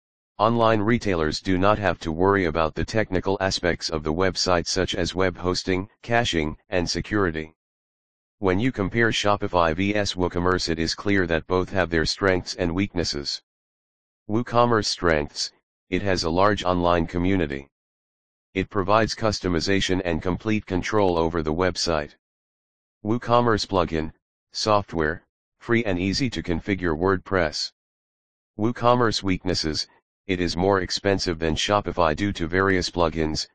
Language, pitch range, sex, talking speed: English, 85-100 Hz, male, 135 wpm